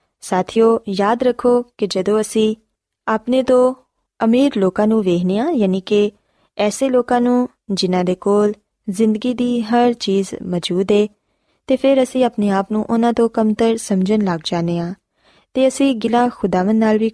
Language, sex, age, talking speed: Punjabi, female, 20-39, 160 wpm